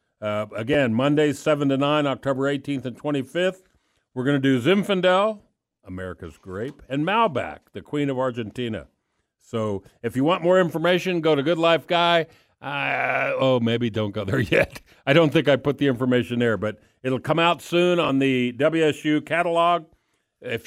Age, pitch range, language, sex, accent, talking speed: 50-69, 115-155 Hz, English, male, American, 170 wpm